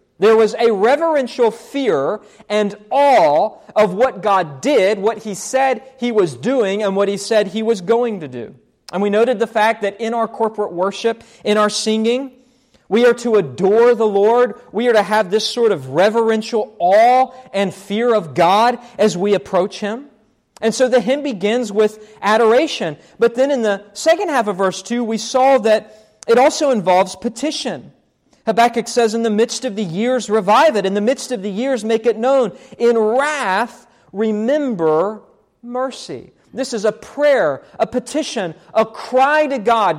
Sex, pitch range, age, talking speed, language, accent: male, 205-250 Hz, 40-59, 175 wpm, English, American